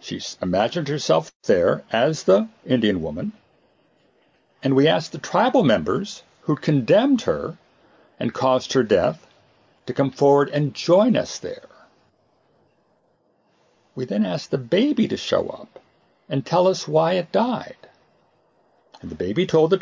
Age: 60-79